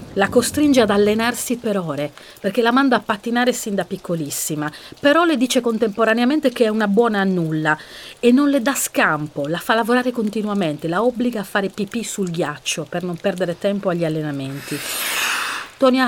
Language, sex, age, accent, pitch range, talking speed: Italian, female, 40-59, native, 175-240 Hz, 175 wpm